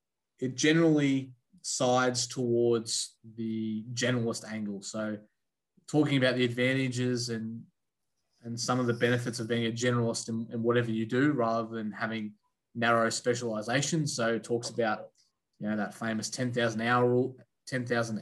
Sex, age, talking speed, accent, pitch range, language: male, 20-39, 140 wpm, Australian, 115-130 Hz, English